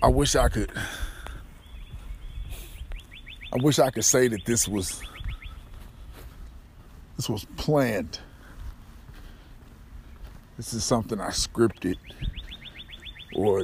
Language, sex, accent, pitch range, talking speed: English, male, American, 80-110 Hz, 90 wpm